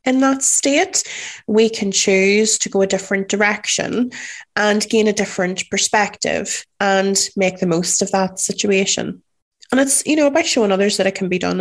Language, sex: English, female